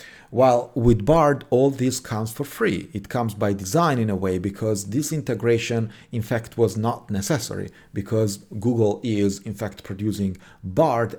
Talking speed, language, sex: 160 wpm, English, male